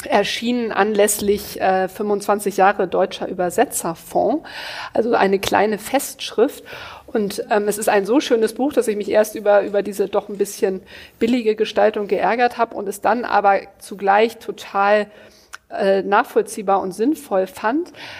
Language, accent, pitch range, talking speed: German, German, 205-255 Hz, 145 wpm